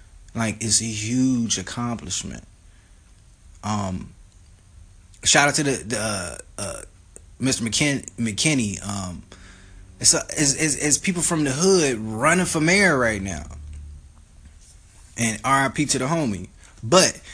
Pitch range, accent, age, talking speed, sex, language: 100-140 Hz, American, 20-39, 125 wpm, male, English